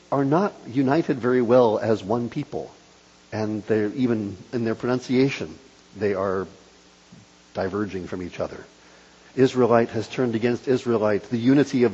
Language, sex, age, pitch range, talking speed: English, male, 50-69, 95-140 Hz, 135 wpm